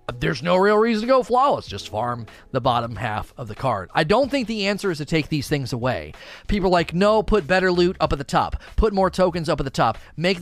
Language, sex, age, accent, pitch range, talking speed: English, male, 30-49, American, 135-185 Hz, 260 wpm